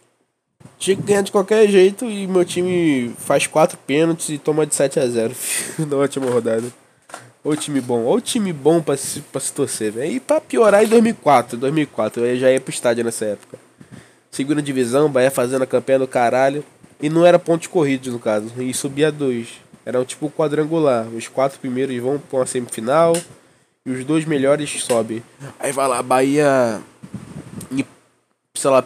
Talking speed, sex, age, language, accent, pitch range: 180 wpm, male, 20-39, Portuguese, Brazilian, 125-160 Hz